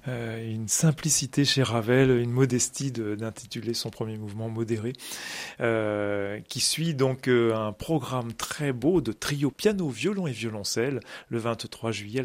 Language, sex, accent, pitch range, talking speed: French, male, French, 115-140 Hz, 150 wpm